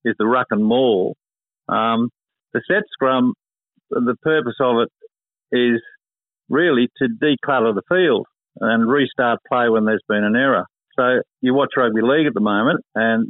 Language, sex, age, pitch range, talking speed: English, male, 50-69, 110-130 Hz, 160 wpm